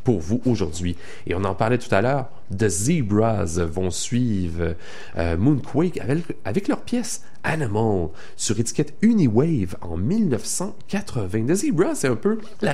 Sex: male